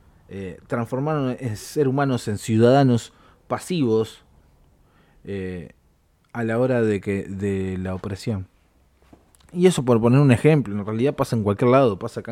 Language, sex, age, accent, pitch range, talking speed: Spanish, male, 20-39, Argentinian, 95-125 Hz, 140 wpm